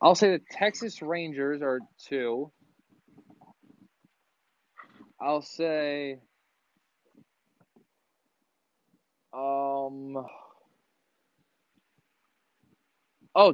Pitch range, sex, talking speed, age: 115-155 Hz, male, 50 wpm, 20-39